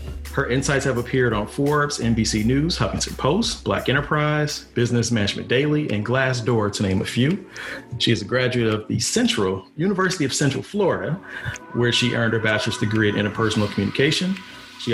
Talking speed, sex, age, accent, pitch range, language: 170 wpm, male, 40-59, American, 105-130 Hz, English